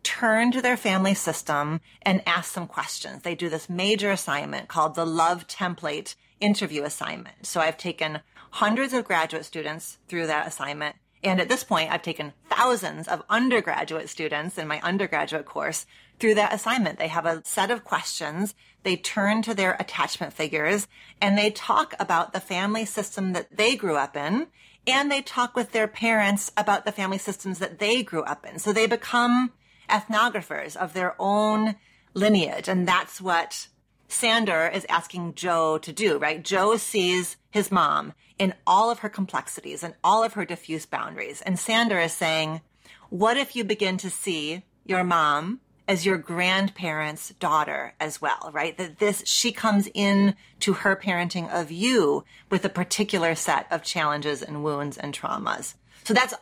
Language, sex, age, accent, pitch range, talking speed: English, female, 30-49, American, 165-215 Hz, 170 wpm